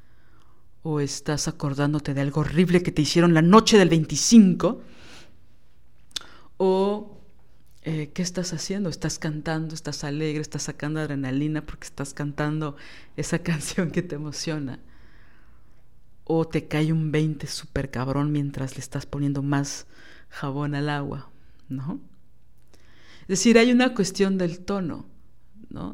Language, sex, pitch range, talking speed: Spanish, female, 145-180 Hz, 130 wpm